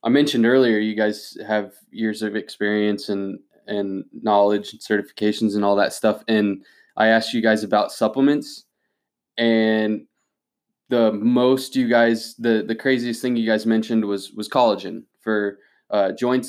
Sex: male